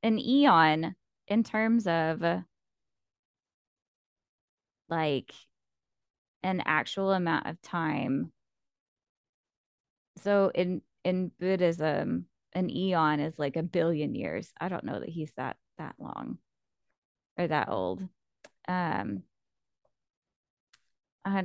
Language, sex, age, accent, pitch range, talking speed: English, female, 20-39, American, 165-250 Hz, 100 wpm